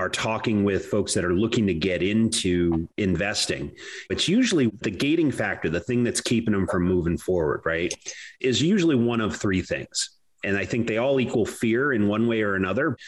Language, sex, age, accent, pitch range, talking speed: English, male, 30-49, American, 95-115 Hz, 195 wpm